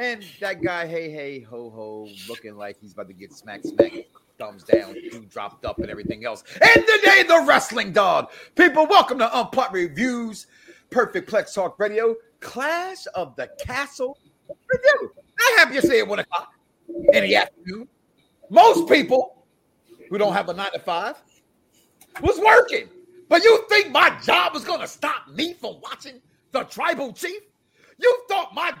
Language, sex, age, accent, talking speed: English, male, 40-59, American, 170 wpm